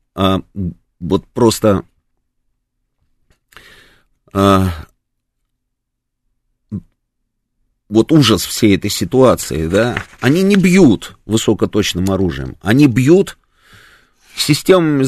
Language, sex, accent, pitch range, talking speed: Russian, male, native, 110-155 Hz, 70 wpm